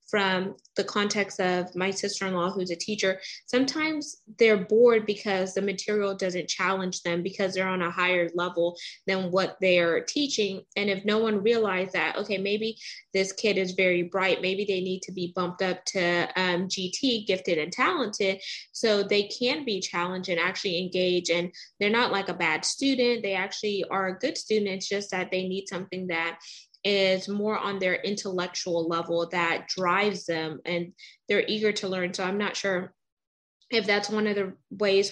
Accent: American